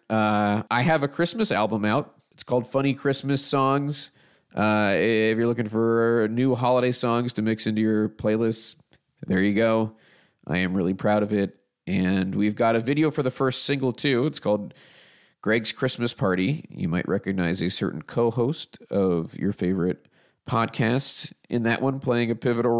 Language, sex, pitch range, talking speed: English, male, 105-130 Hz, 170 wpm